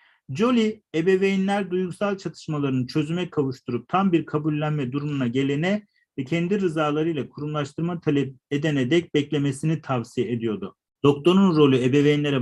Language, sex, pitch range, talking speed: Turkish, male, 130-175 Hz, 115 wpm